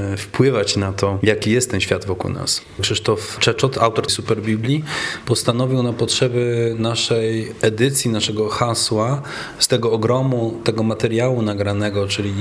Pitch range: 110-125 Hz